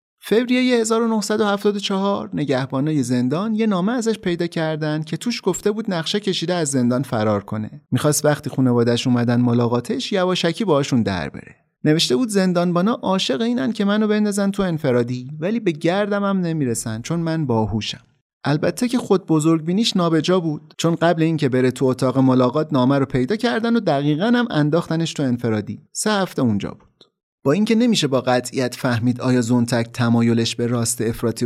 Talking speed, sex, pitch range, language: 165 wpm, male, 120-200 Hz, Persian